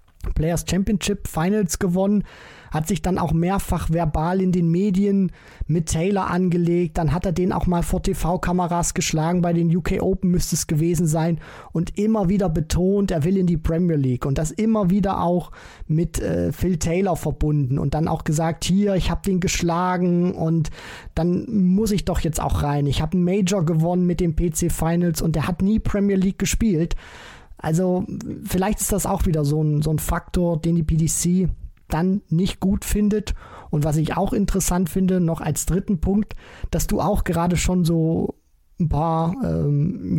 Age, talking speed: 20-39, 180 wpm